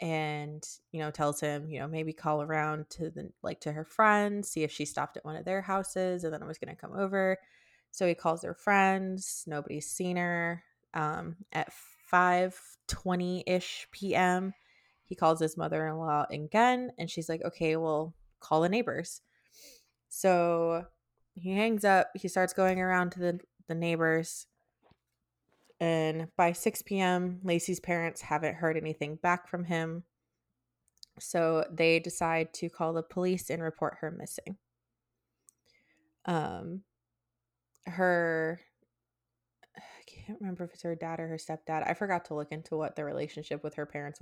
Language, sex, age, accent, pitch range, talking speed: English, female, 20-39, American, 155-185 Hz, 160 wpm